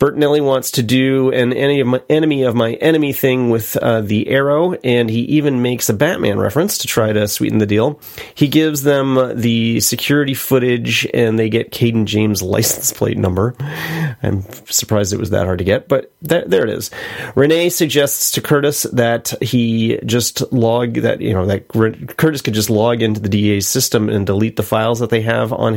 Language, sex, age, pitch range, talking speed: English, male, 30-49, 110-135 Hz, 195 wpm